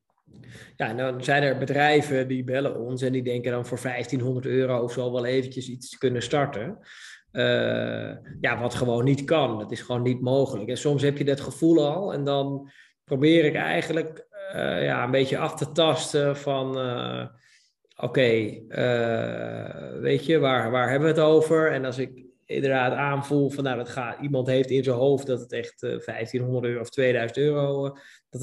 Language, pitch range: Dutch, 125-145 Hz